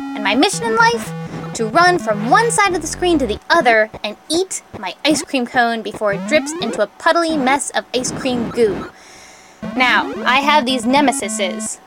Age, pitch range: 10-29, 215-290 Hz